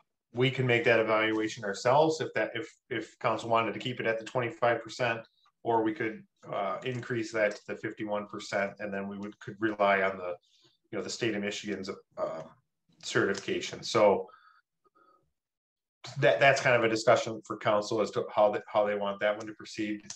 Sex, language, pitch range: male, English, 105-125 Hz